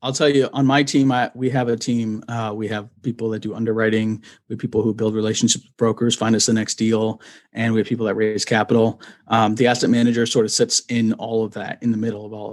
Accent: American